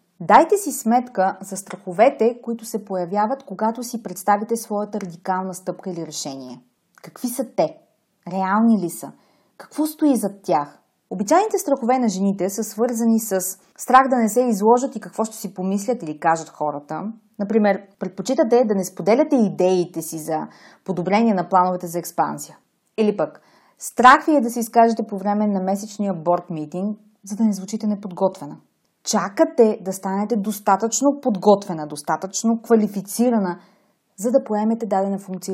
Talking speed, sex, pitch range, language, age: 150 wpm, female, 185-230 Hz, Bulgarian, 30-49